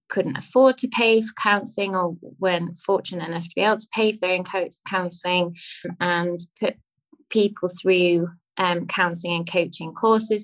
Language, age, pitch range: English, 20-39, 175-200 Hz